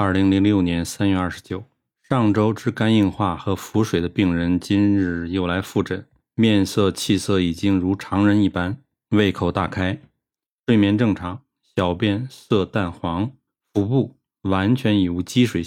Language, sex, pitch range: Chinese, male, 95-115 Hz